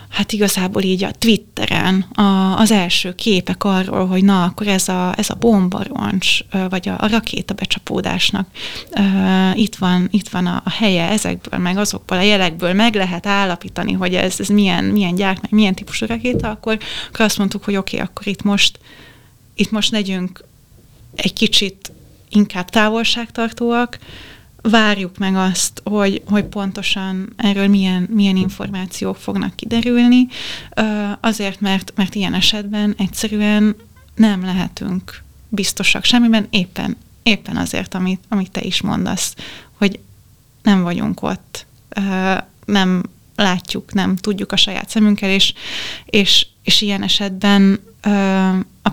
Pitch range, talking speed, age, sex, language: 185-210 Hz, 135 wpm, 30-49, female, Hungarian